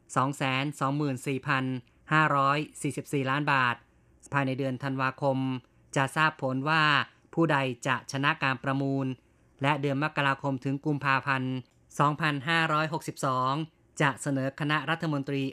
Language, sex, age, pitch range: Thai, female, 20-39, 135-155 Hz